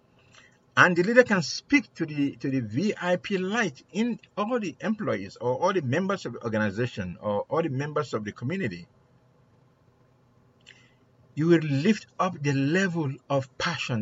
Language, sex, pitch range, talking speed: English, male, 125-205 Hz, 160 wpm